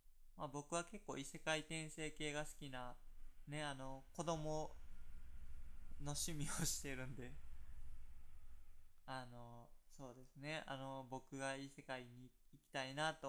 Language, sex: Japanese, male